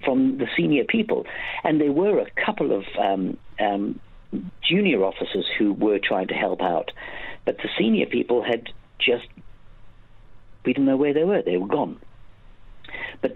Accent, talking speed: British, 155 wpm